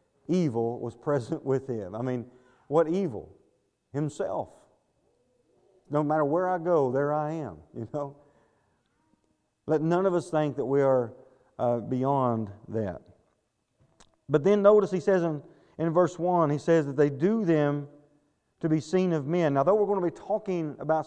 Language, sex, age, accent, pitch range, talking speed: English, male, 40-59, American, 145-190 Hz, 170 wpm